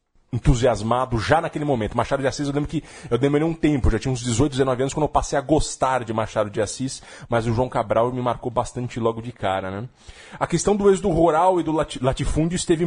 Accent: Brazilian